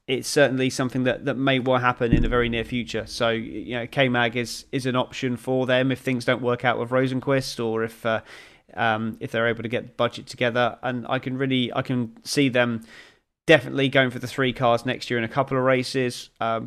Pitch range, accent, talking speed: 115-135 Hz, British, 230 wpm